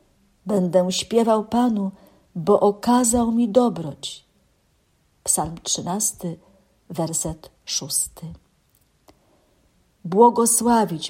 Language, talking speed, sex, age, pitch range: Polish, 65 wpm, female, 50-69, 175-220 Hz